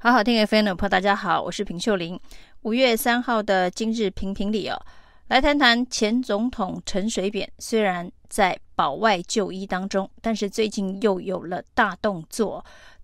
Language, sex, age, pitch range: Chinese, female, 30-49, 195-240 Hz